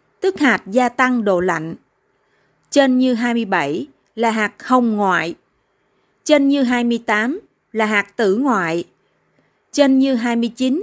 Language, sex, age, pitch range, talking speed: Vietnamese, female, 20-39, 225-275 Hz, 140 wpm